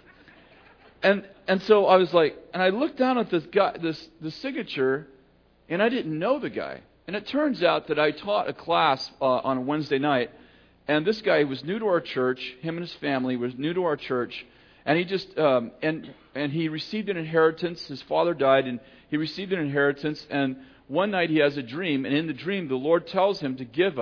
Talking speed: 220 wpm